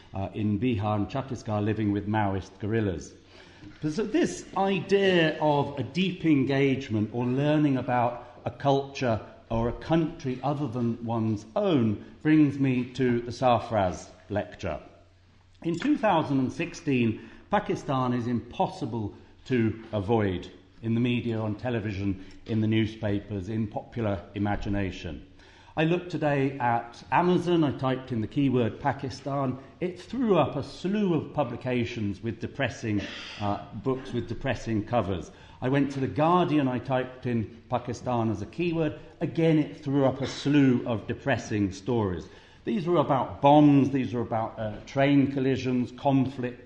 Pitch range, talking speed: 110-140 Hz, 140 wpm